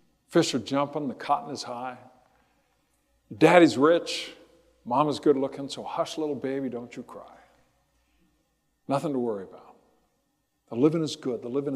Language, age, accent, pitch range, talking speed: English, 60-79, American, 125-190 Hz, 155 wpm